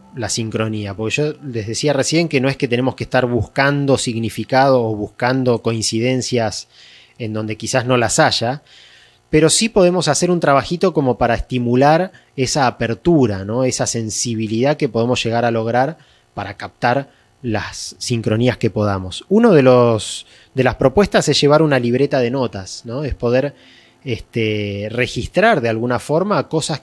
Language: Spanish